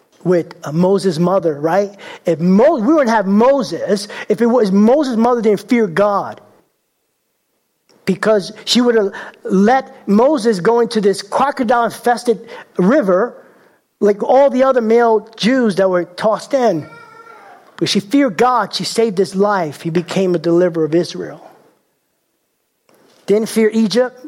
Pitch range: 190-235 Hz